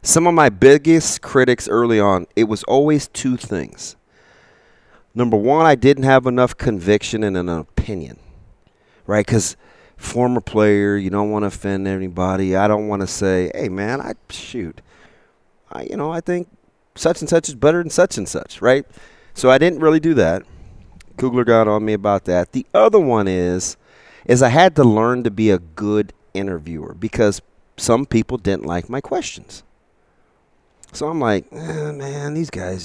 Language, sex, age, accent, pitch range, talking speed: English, male, 30-49, American, 95-130 Hz, 175 wpm